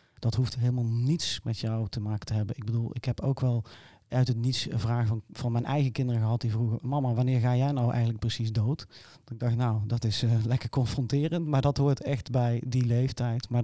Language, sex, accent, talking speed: Dutch, male, Dutch, 235 wpm